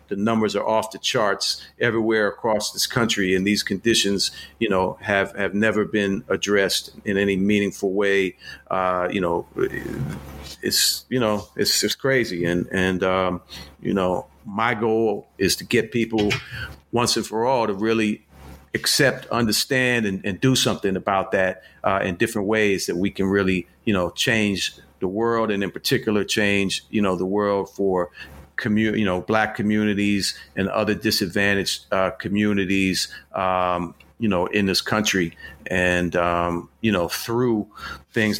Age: 50-69